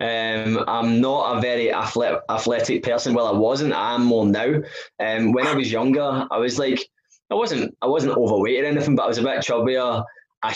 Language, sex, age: English, male, 20-39